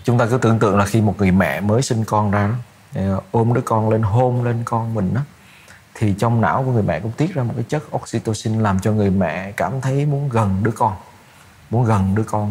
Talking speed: 235 wpm